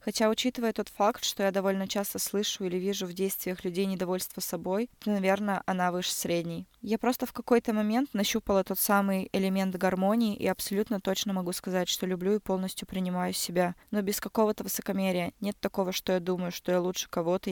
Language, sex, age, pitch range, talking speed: Russian, female, 20-39, 185-210 Hz, 190 wpm